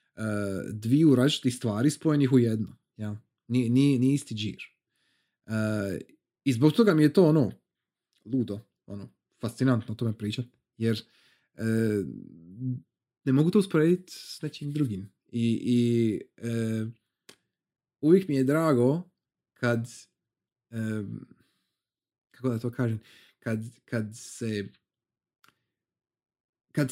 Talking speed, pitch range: 115 wpm, 110-145 Hz